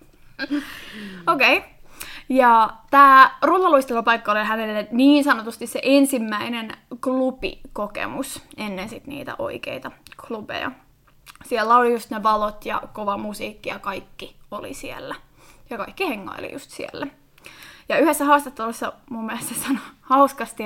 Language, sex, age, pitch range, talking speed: Finnish, female, 20-39, 215-285 Hz, 120 wpm